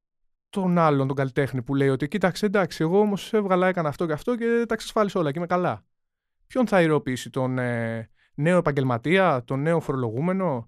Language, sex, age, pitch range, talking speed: Greek, male, 20-39, 125-190 Hz, 180 wpm